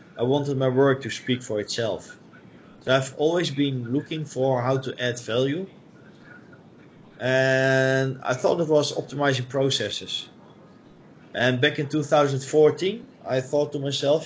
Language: English